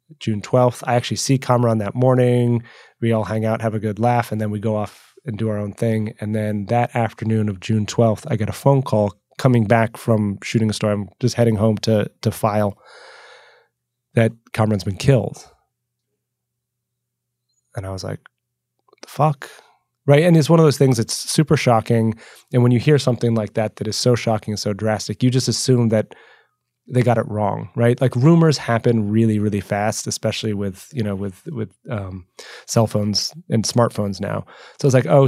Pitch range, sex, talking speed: 105-125 Hz, male, 200 wpm